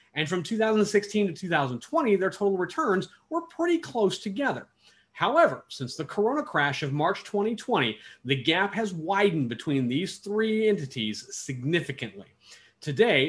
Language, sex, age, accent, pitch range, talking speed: English, male, 30-49, American, 135-205 Hz, 135 wpm